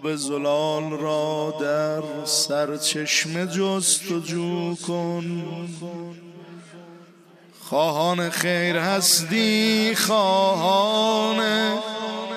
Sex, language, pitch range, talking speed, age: male, Persian, 165-210 Hz, 70 wpm, 50-69